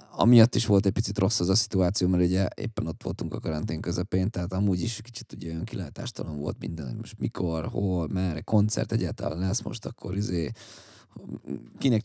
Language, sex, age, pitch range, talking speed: Hungarian, male, 20-39, 90-115 Hz, 180 wpm